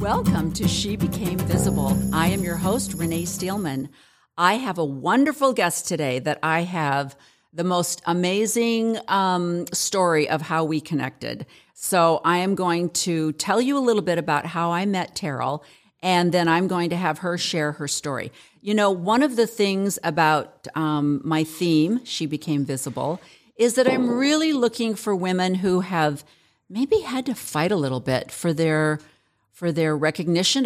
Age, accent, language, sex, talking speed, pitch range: 50-69, American, English, female, 170 wpm, 155-195 Hz